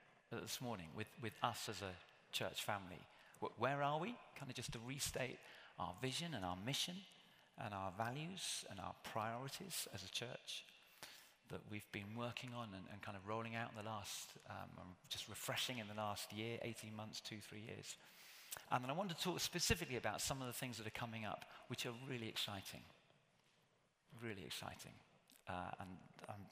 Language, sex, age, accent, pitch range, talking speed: English, male, 40-59, British, 105-130 Hz, 185 wpm